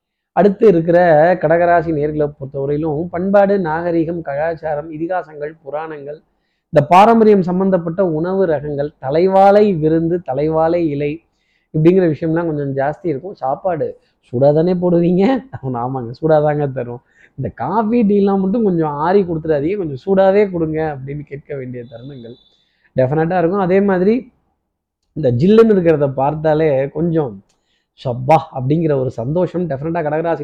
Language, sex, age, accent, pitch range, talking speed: Tamil, male, 20-39, native, 145-180 Hz, 120 wpm